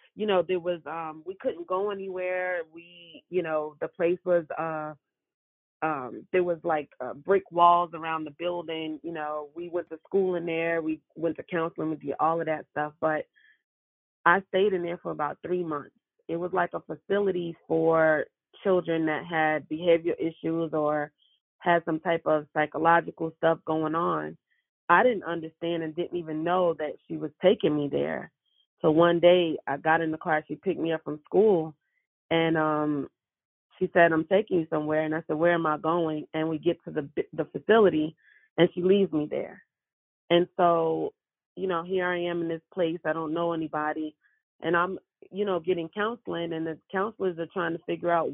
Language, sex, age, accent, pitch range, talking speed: English, female, 30-49, American, 155-175 Hz, 190 wpm